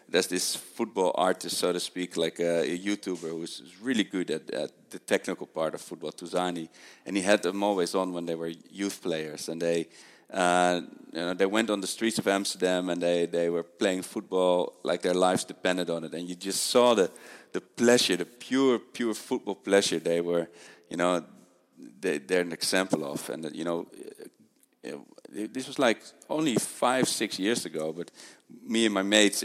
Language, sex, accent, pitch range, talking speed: English, male, Dutch, 85-105 Hz, 190 wpm